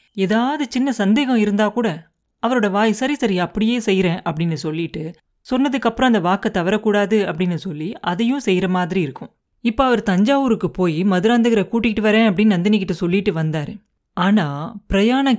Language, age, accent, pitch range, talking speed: Tamil, 30-49, native, 180-230 Hz, 140 wpm